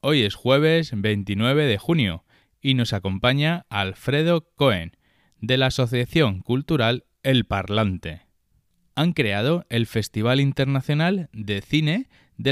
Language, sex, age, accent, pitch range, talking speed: Spanish, male, 20-39, Spanish, 100-140 Hz, 120 wpm